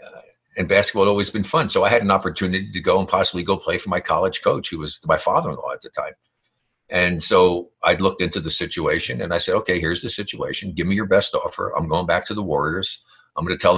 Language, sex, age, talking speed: English, male, 60-79, 250 wpm